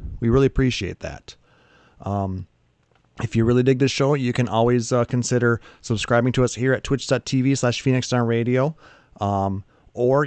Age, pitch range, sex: 30-49, 110-140 Hz, male